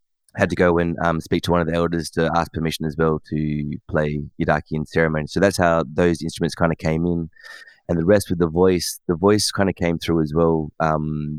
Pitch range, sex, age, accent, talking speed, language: 80-85 Hz, male, 20-39, Australian, 235 wpm, English